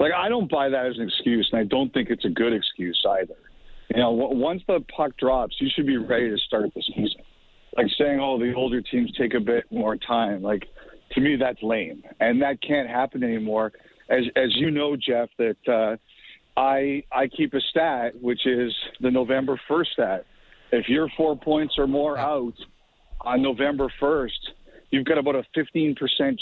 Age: 50-69